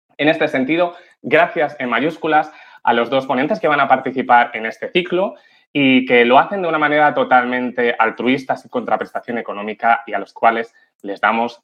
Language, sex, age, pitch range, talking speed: Spanish, male, 20-39, 125-175 Hz, 180 wpm